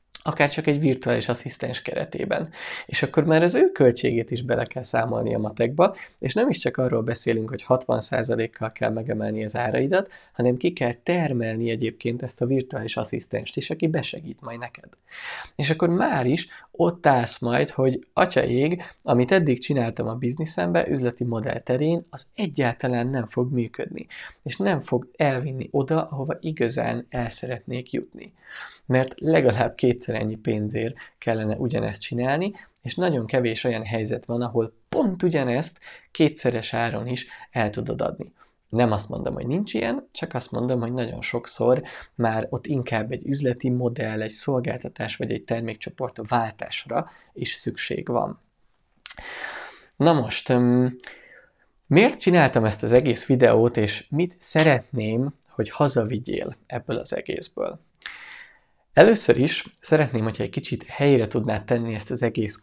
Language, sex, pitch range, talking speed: Hungarian, male, 115-140 Hz, 150 wpm